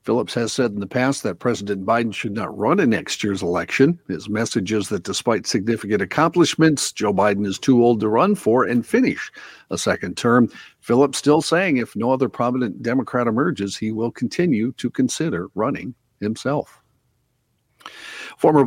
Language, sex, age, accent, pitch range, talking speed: English, male, 50-69, American, 105-130 Hz, 170 wpm